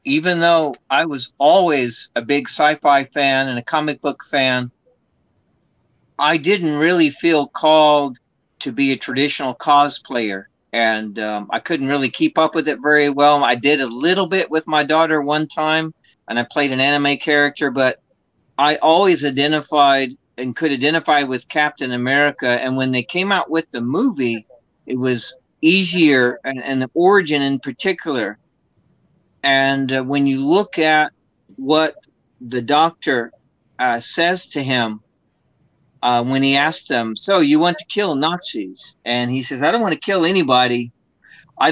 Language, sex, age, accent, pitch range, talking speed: English, male, 40-59, American, 130-160 Hz, 160 wpm